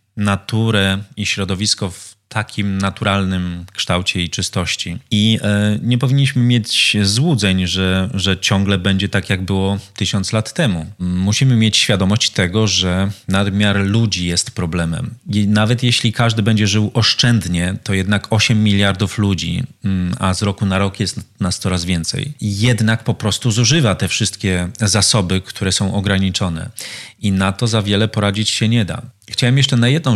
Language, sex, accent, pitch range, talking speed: Polish, male, native, 95-115 Hz, 150 wpm